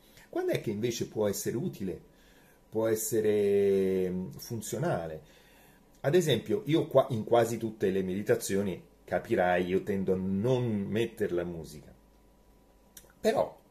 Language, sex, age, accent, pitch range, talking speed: Italian, male, 30-49, native, 90-140 Hz, 125 wpm